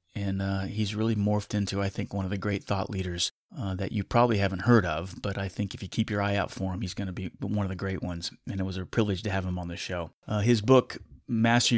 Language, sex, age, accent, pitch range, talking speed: English, male, 30-49, American, 95-115 Hz, 285 wpm